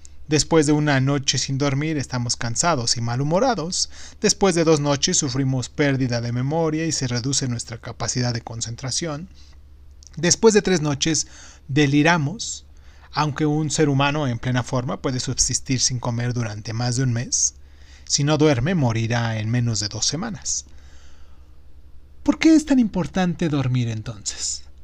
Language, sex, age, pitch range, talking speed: Spanish, male, 30-49, 115-160 Hz, 150 wpm